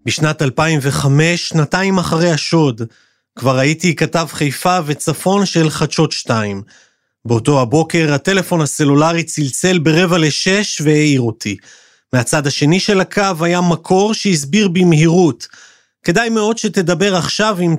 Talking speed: 120 wpm